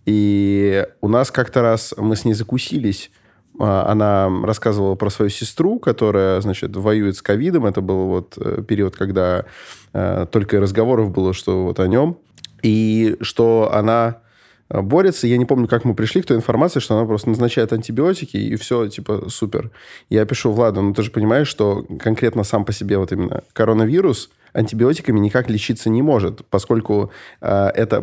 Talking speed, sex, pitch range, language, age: 160 wpm, male, 105-125 Hz, Russian, 20-39